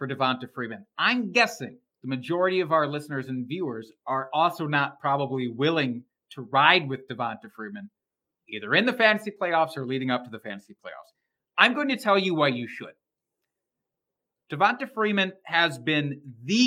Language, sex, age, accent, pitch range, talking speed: English, male, 40-59, American, 135-185 Hz, 170 wpm